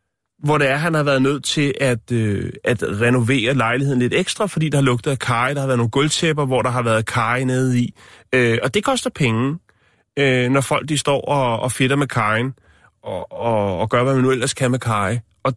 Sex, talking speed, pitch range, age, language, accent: male, 230 wpm, 110-140 Hz, 30-49, Danish, native